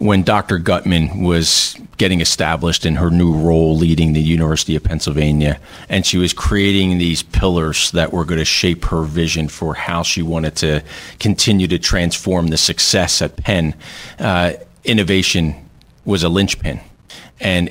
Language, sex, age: English, male, 40-59